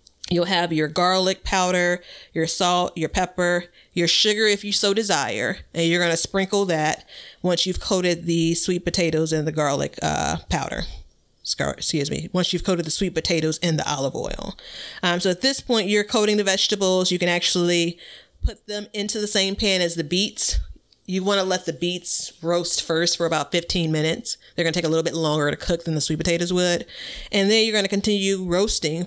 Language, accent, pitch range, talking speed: English, American, 165-195 Hz, 205 wpm